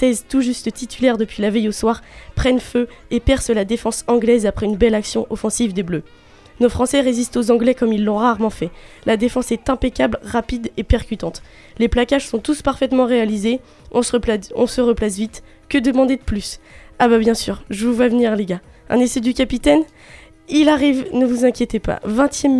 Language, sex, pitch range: French, female, 215-250 Hz